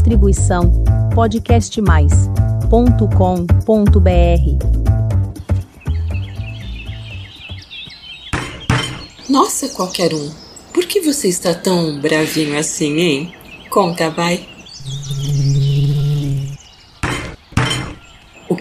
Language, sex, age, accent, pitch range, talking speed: Portuguese, female, 40-59, Brazilian, 140-195 Hz, 50 wpm